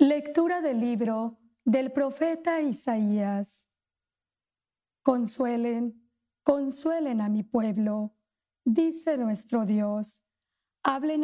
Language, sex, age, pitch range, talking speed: English, female, 40-59, 220-290 Hz, 80 wpm